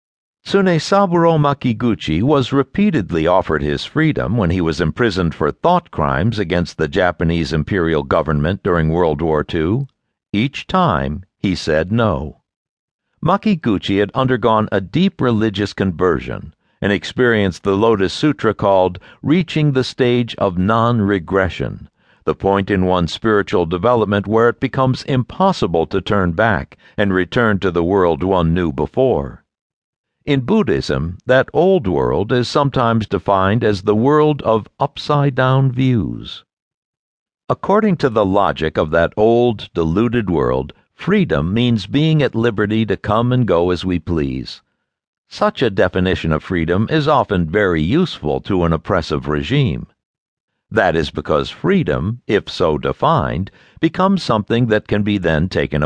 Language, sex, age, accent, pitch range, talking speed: English, male, 60-79, American, 90-125 Hz, 140 wpm